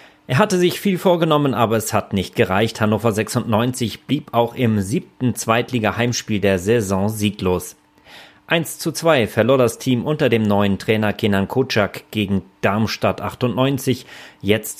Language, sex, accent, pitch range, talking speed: German, male, German, 100-130 Hz, 140 wpm